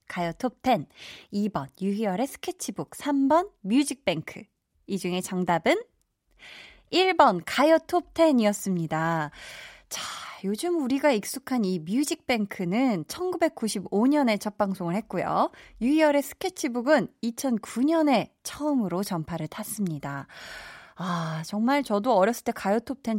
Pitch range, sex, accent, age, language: 190-290 Hz, female, native, 20-39, Korean